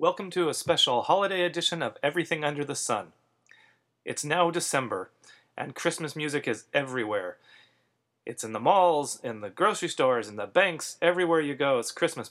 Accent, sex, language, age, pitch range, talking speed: American, male, English, 30-49, 130-160 Hz, 170 wpm